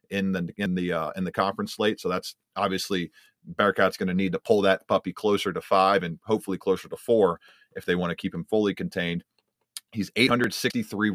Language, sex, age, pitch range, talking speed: English, male, 30-49, 95-110 Hz, 205 wpm